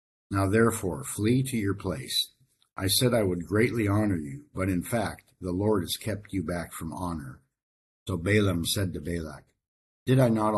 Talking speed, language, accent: 180 wpm, English, American